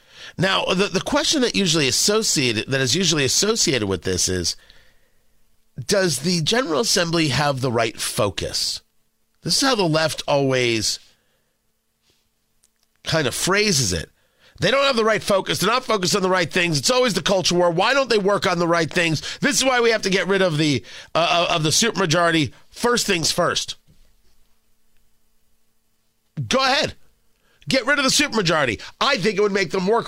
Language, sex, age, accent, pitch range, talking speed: English, male, 40-59, American, 155-225 Hz, 180 wpm